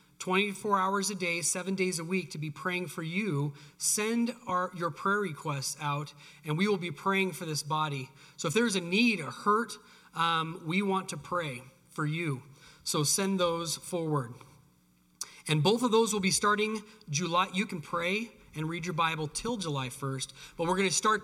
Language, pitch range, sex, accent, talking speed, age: English, 150-190 Hz, male, American, 190 wpm, 30-49